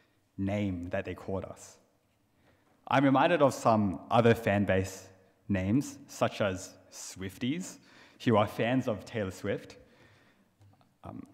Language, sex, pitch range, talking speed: English, male, 95-115 Hz, 120 wpm